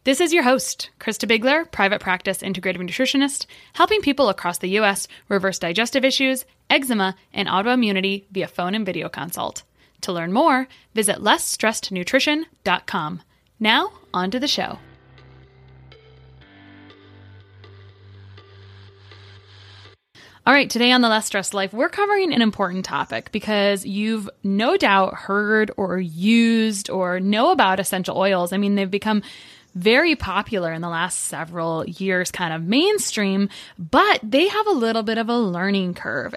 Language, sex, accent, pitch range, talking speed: English, female, American, 185-240 Hz, 140 wpm